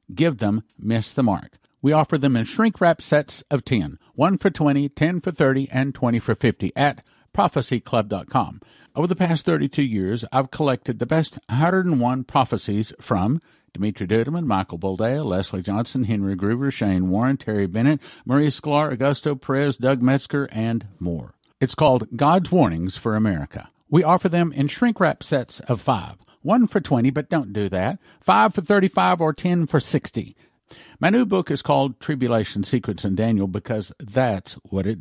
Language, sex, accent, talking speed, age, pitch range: English, male, American, 170 wpm, 50-69, 105-150 Hz